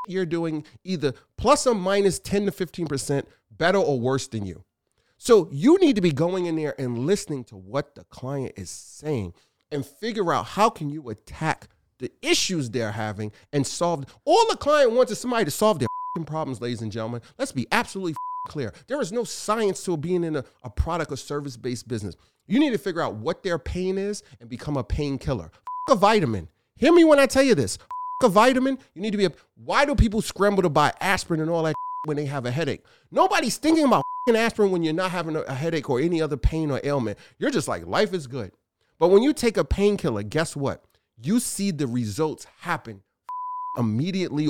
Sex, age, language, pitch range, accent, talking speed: male, 40-59, English, 130-205 Hz, American, 210 wpm